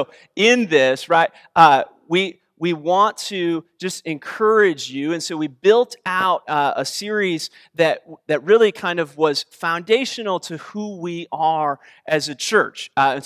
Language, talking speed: English, 165 wpm